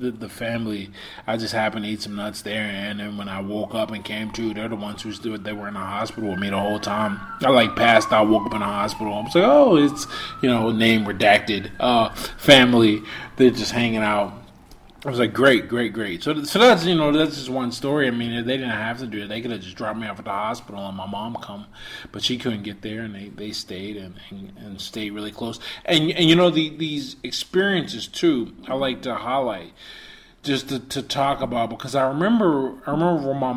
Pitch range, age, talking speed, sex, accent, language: 105-140 Hz, 20-39, 235 wpm, male, American, English